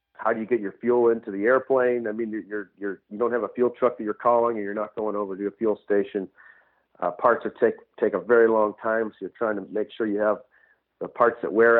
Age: 40-59